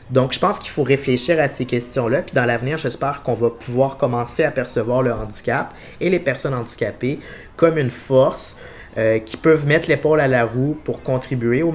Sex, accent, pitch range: male, Canadian, 120-145 Hz